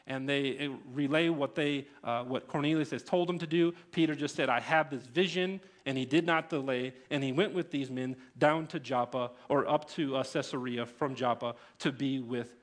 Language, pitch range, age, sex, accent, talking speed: English, 130-170 Hz, 40-59, male, American, 210 wpm